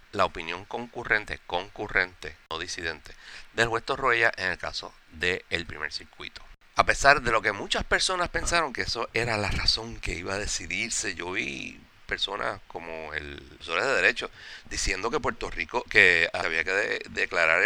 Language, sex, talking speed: English, male, 175 wpm